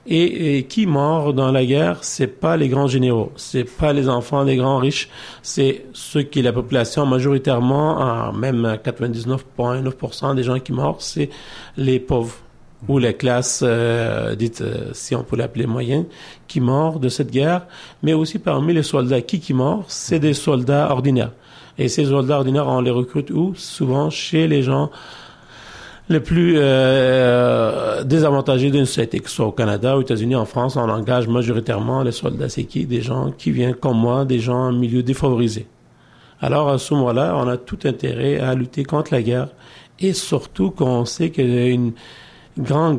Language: English